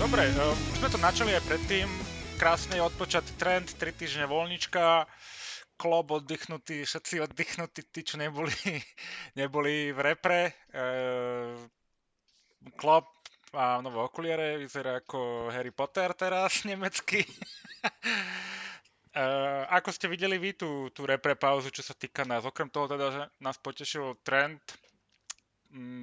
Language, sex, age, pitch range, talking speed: Slovak, male, 30-49, 125-150 Hz, 130 wpm